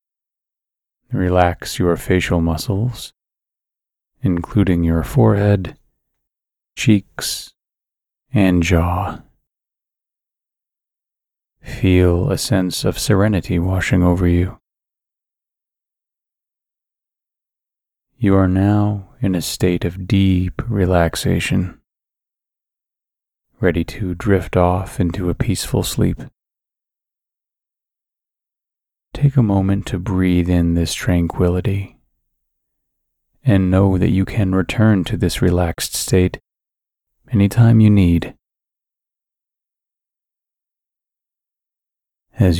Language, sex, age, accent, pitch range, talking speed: English, male, 30-49, American, 90-105 Hz, 80 wpm